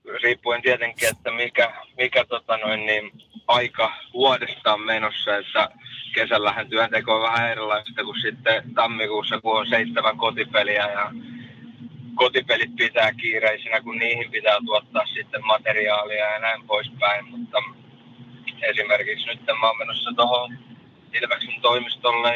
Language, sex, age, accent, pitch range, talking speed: Finnish, male, 20-39, native, 110-130 Hz, 125 wpm